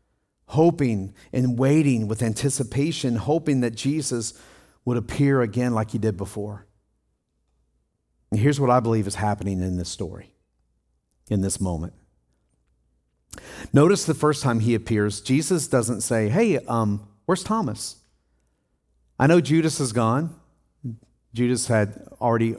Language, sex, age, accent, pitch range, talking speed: English, male, 50-69, American, 100-140 Hz, 130 wpm